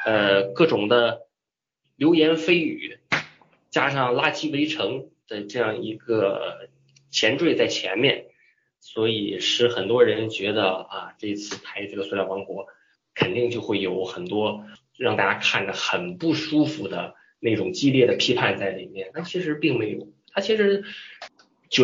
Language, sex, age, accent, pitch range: Chinese, male, 20-39, native, 105-170 Hz